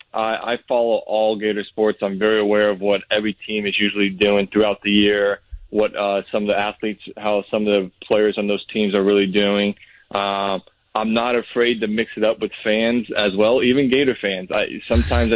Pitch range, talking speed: 100-110 Hz, 205 wpm